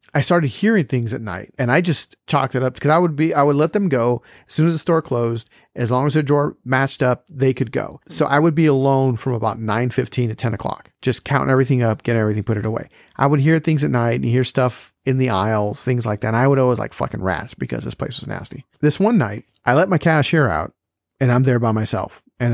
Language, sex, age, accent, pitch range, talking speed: English, male, 40-59, American, 120-150 Hz, 265 wpm